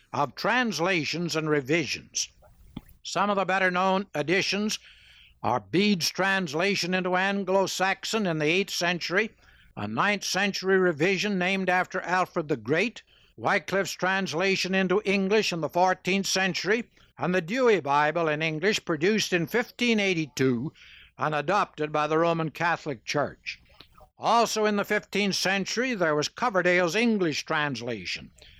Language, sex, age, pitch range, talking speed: English, male, 60-79, 160-200 Hz, 130 wpm